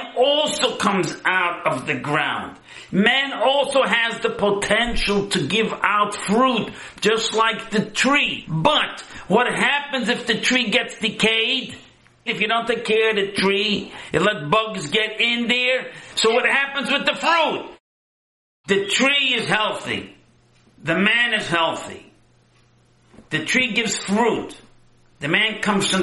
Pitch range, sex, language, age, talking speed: 185-235 Hz, male, English, 50-69, 145 wpm